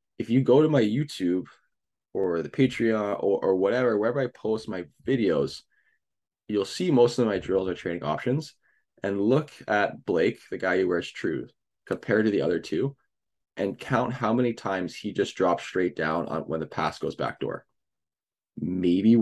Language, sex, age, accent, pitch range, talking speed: English, male, 20-39, American, 90-120 Hz, 180 wpm